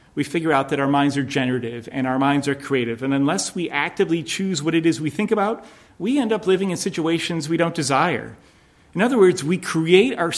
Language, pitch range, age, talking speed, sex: English, 135-175 Hz, 40-59, 225 wpm, male